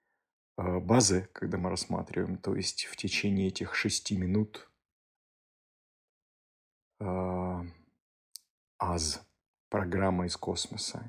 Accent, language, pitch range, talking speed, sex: native, Russian, 85-105 Hz, 85 wpm, male